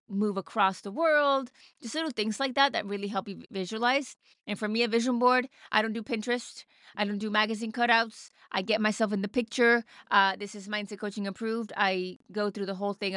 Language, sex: English, female